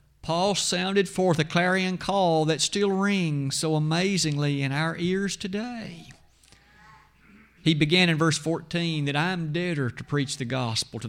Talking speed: 155 wpm